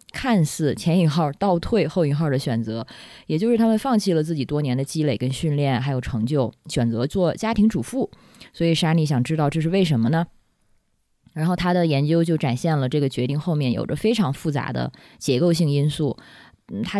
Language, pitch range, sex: Chinese, 130-175 Hz, female